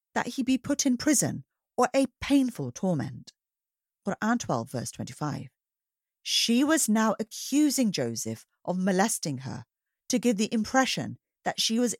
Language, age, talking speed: English, 40-59, 145 wpm